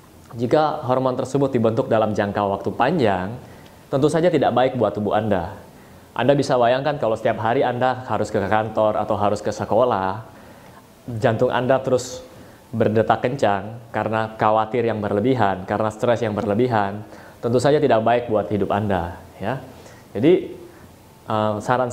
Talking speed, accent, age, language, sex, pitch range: 140 wpm, native, 20-39, Indonesian, male, 105-130 Hz